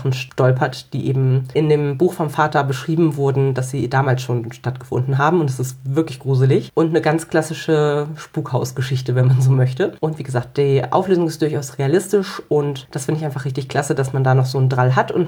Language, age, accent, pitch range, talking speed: German, 30-49, German, 140-170 Hz, 210 wpm